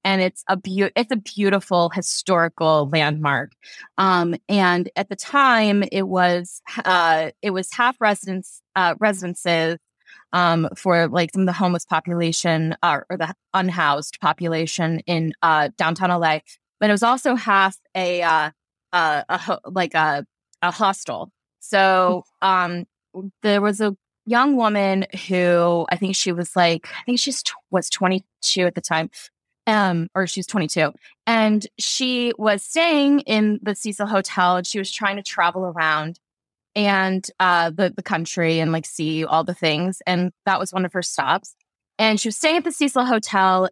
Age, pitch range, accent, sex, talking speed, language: 20-39, 170-205 Hz, American, female, 160 wpm, English